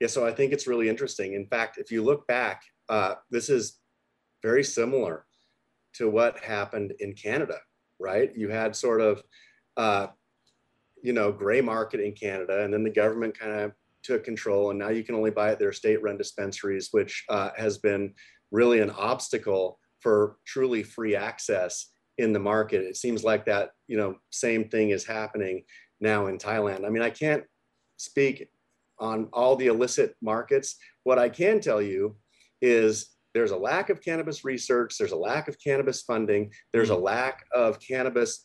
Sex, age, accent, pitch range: male, 30-49, American, 105-145 Hz